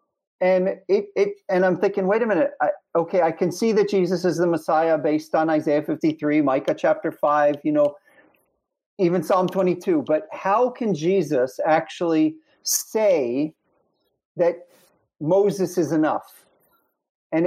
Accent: American